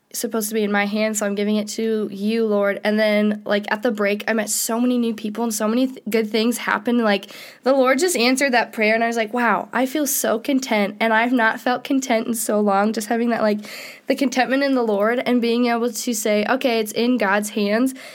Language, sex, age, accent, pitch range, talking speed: English, female, 10-29, American, 205-245 Hz, 250 wpm